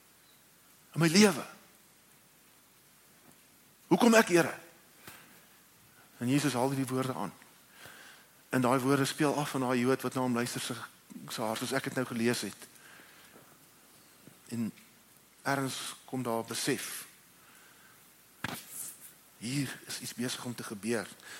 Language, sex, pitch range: English, male, 125-150 Hz